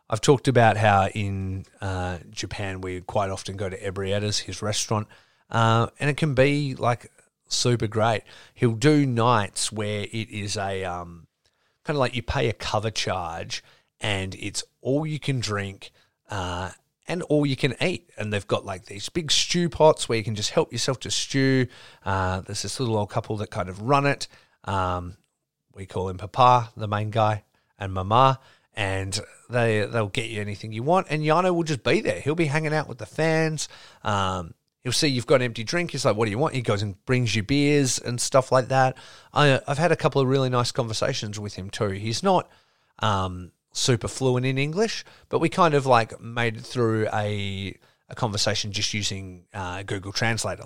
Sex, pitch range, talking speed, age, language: male, 100-135 Hz, 200 wpm, 30-49, English